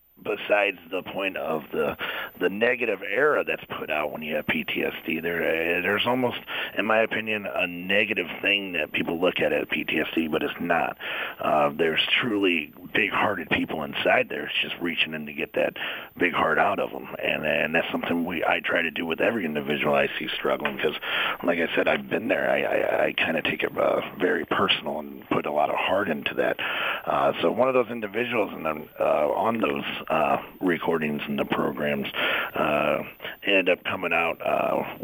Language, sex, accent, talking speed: English, male, American, 195 wpm